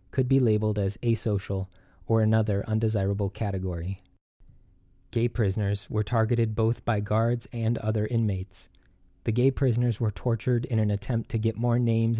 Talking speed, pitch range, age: 150 wpm, 100-115 Hz, 20-39